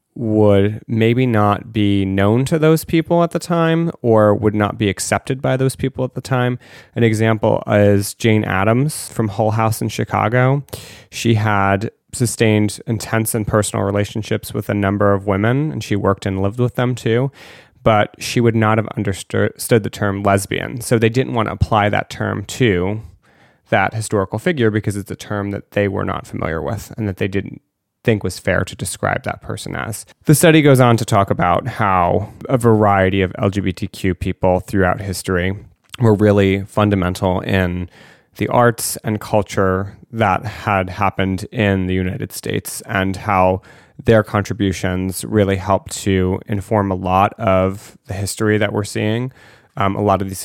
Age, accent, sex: 30-49, American, male